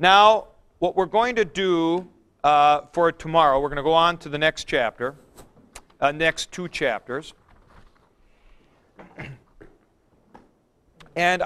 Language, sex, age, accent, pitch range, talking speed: English, male, 50-69, American, 165-225 Hz, 120 wpm